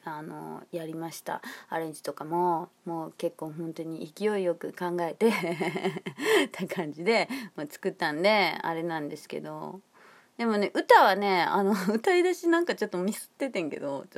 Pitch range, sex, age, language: 170-275 Hz, female, 30-49, Japanese